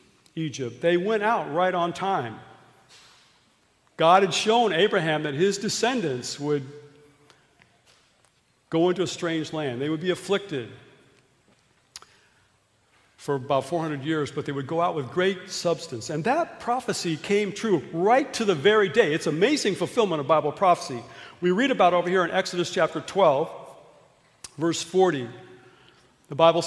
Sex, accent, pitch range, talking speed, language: male, American, 155-205 Hz, 145 wpm, English